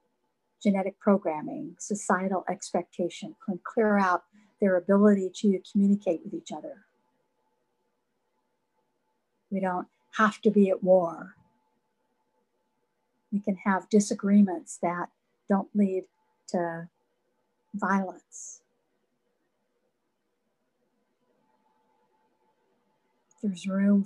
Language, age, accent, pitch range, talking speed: English, 50-69, American, 175-205 Hz, 80 wpm